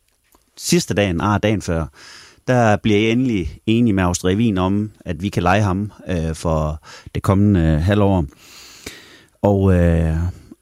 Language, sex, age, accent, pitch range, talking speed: Danish, male, 30-49, native, 90-120 Hz, 145 wpm